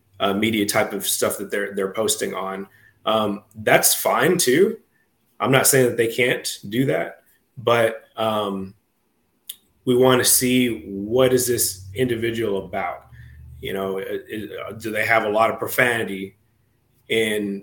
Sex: male